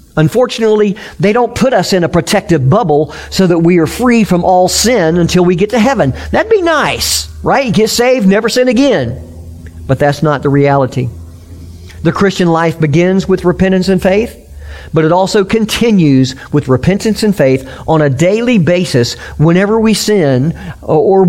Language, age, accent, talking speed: English, 50-69, American, 170 wpm